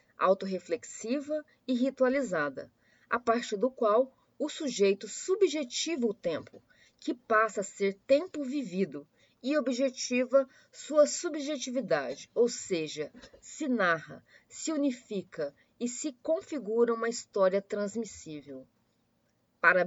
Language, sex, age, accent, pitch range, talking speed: Portuguese, female, 20-39, Brazilian, 195-275 Hz, 105 wpm